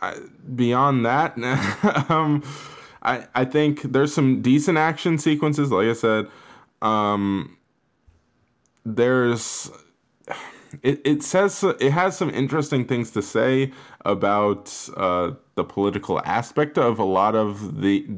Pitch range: 105-145 Hz